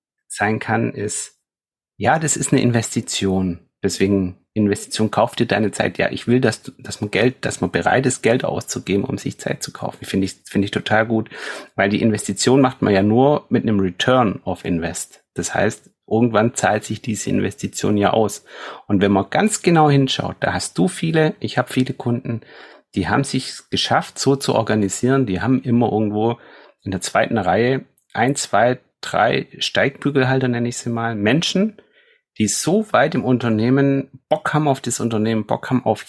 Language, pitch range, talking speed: German, 105-135 Hz, 185 wpm